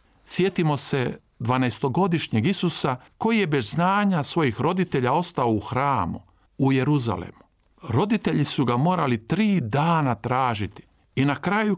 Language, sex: Croatian, male